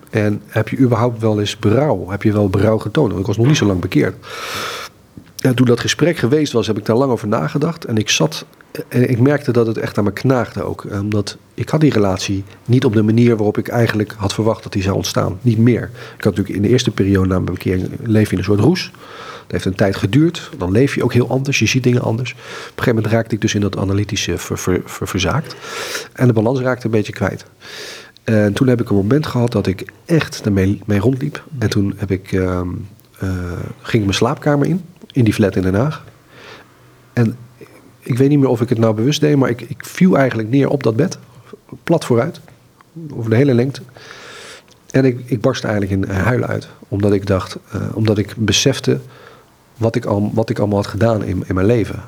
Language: Dutch